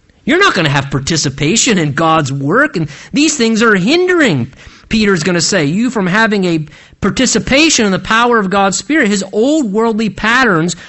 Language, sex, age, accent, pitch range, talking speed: English, male, 50-69, American, 155-225 Hz, 180 wpm